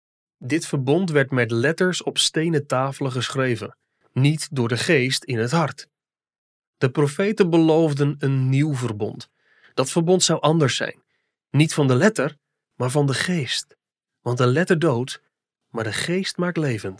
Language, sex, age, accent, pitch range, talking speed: Dutch, male, 30-49, Dutch, 120-155 Hz, 155 wpm